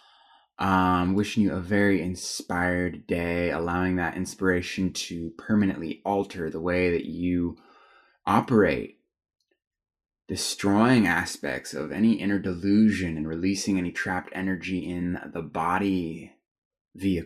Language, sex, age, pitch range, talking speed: English, male, 20-39, 90-100 Hz, 115 wpm